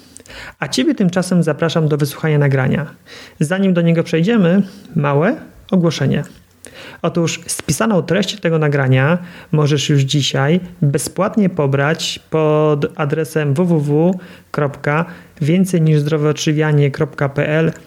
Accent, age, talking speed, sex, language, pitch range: native, 30-49, 85 wpm, male, Polish, 145-180 Hz